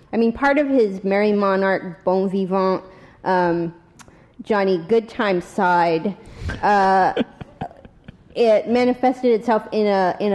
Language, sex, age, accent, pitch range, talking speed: English, female, 30-49, American, 170-195 Hz, 115 wpm